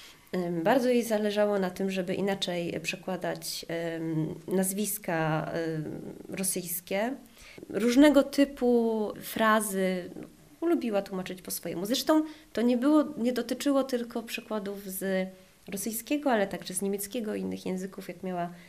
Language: Polish